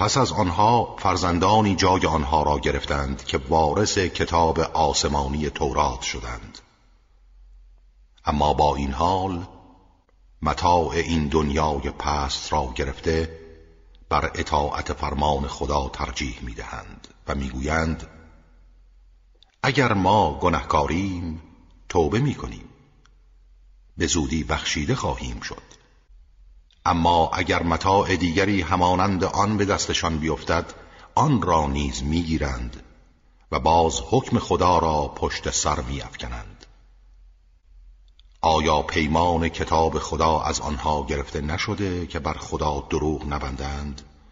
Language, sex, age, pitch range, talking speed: Persian, male, 50-69, 70-85 Hz, 110 wpm